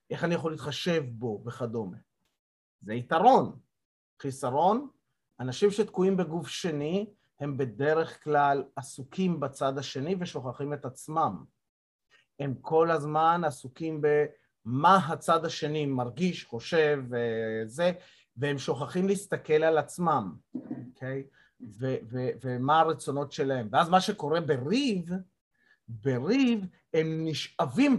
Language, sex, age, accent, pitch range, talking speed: Hebrew, male, 30-49, native, 130-165 Hz, 105 wpm